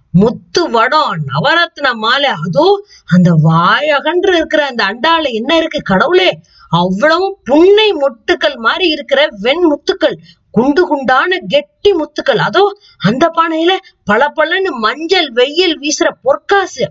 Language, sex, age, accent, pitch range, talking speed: Tamil, female, 20-39, native, 205-320 Hz, 55 wpm